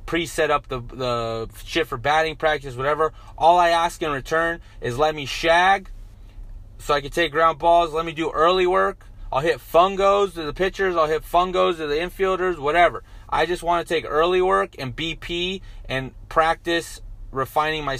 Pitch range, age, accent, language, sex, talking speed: 115-165 Hz, 30-49, American, English, male, 185 wpm